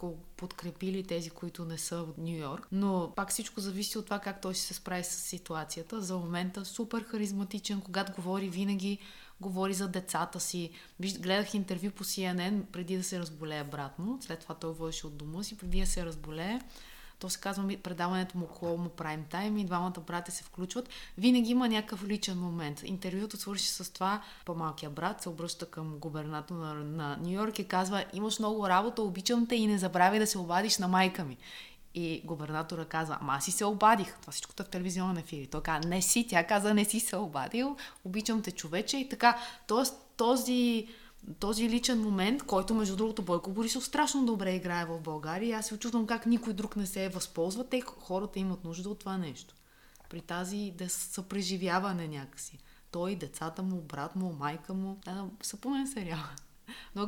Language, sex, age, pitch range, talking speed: Bulgarian, female, 20-39, 170-210 Hz, 185 wpm